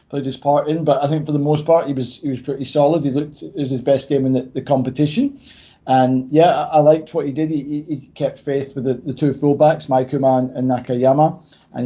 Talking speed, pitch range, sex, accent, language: 255 wpm, 130-150 Hz, male, British, English